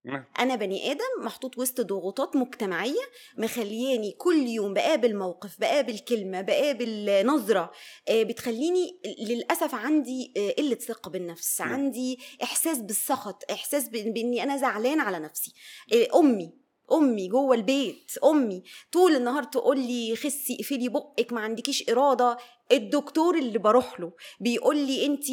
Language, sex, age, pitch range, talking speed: Arabic, female, 20-39, 230-295 Hz, 125 wpm